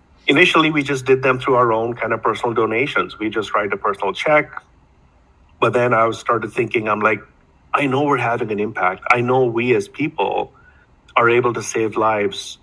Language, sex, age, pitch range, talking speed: English, male, 50-69, 100-135 Hz, 195 wpm